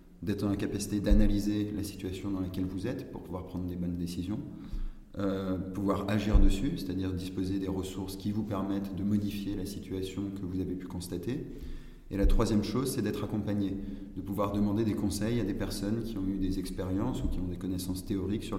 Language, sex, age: French, male, 20-39